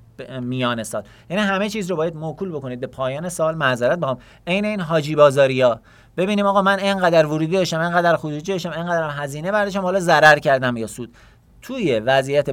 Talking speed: 185 wpm